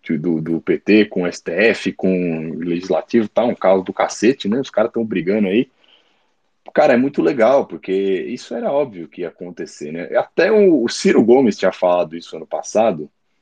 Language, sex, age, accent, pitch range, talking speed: Portuguese, male, 40-59, Brazilian, 90-145 Hz, 190 wpm